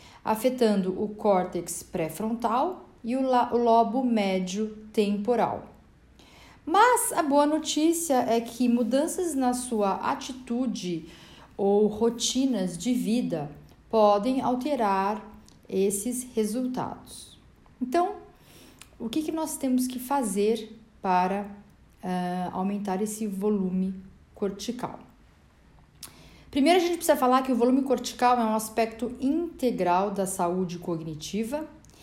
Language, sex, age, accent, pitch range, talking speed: Portuguese, female, 40-59, Brazilian, 200-260 Hz, 105 wpm